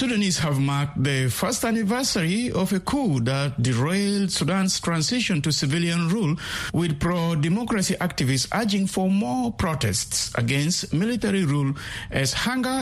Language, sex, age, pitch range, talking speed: English, male, 60-79, 135-190 Hz, 130 wpm